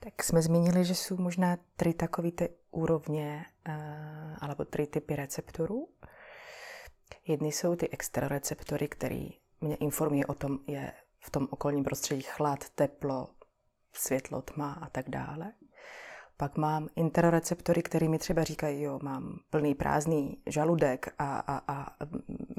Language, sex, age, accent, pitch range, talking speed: Czech, female, 30-49, native, 145-170 Hz, 145 wpm